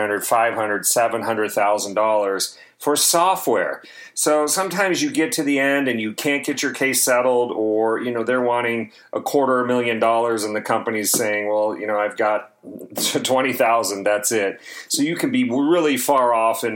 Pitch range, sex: 110-140 Hz, male